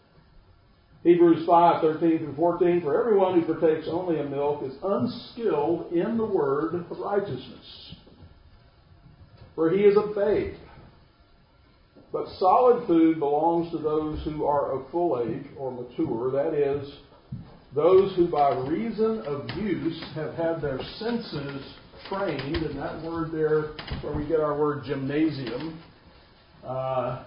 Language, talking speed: English, 135 wpm